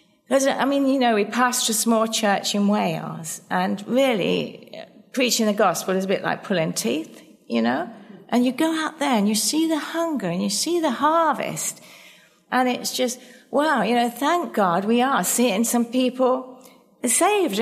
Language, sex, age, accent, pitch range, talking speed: English, female, 40-59, British, 195-250 Hz, 180 wpm